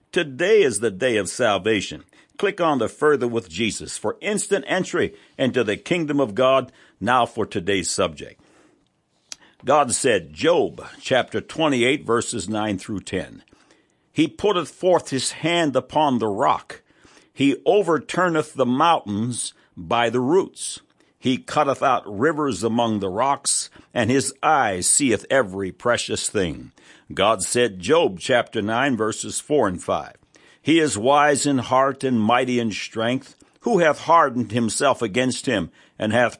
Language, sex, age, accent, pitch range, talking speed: English, male, 60-79, American, 115-155 Hz, 145 wpm